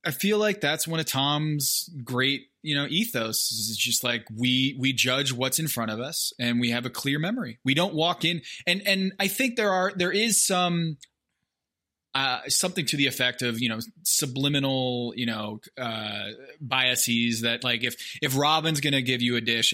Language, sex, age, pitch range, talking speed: English, male, 20-39, 120-160 Hz, 195 wpm